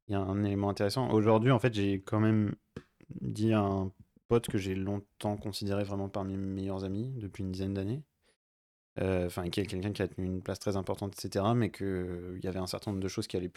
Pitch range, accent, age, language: 95-110 Hz, French, 20-39, French